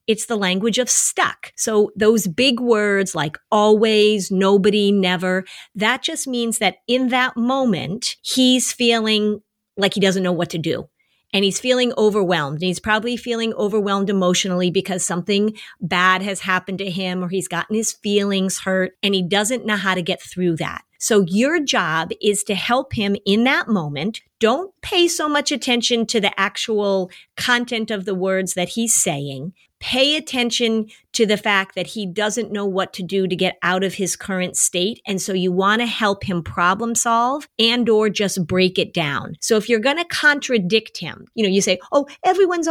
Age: 40-59